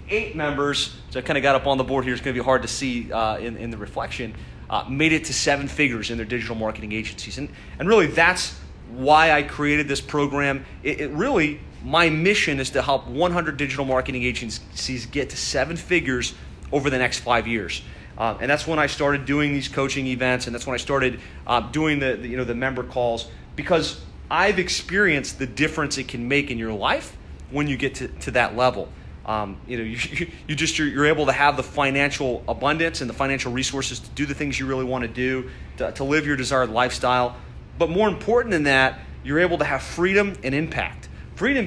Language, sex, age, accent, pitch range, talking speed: English, male, 30-49, American, 120-150 Hz, 215 wpm